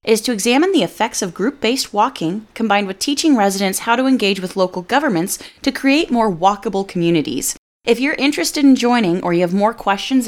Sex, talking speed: female, 195 wpm